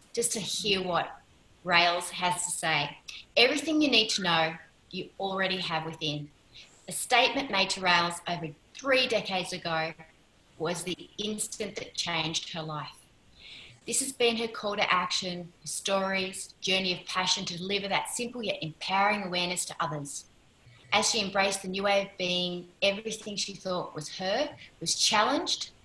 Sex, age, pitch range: female, 30-49, 160-200 Hz